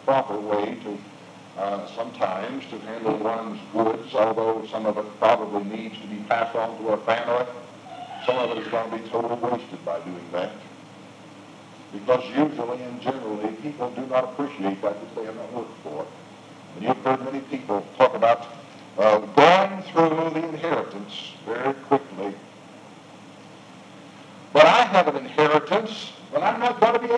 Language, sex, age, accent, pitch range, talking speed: English, male, 60-79, American, 120-195 Hz, 165 wpm